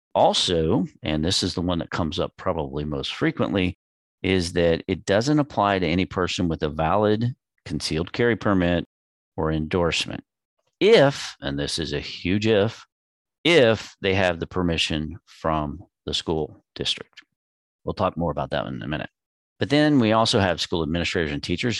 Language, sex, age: English, male, 40-59